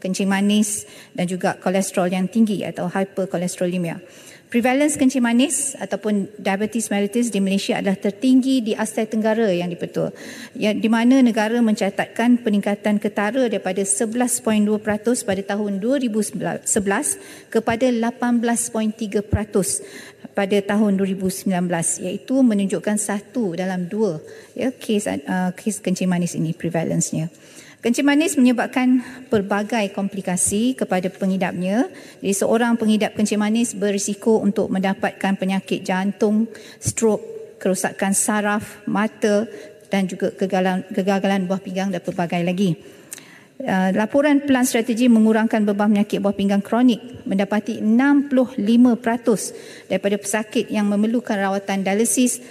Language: English